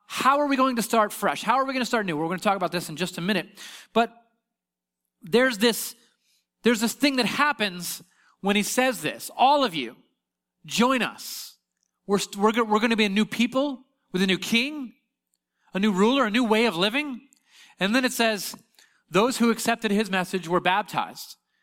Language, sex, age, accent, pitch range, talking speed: English, male, 30-49, American, 160-220 Hz, 200 wpm